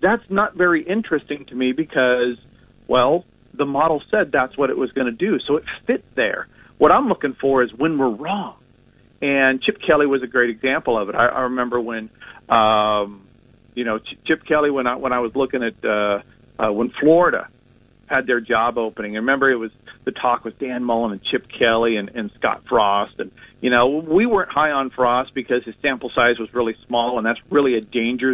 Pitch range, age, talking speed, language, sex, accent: 115-145 Hz, 50-69, 210 wpm, English, male, American